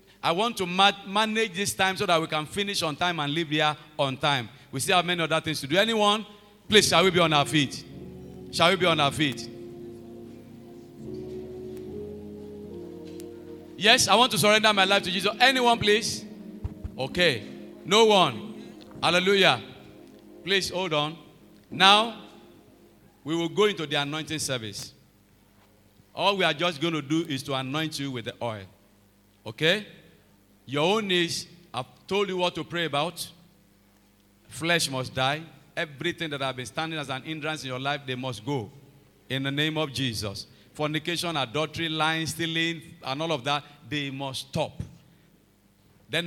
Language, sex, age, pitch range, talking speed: English, male, 50-69, 130-175 Hz, 165 wpm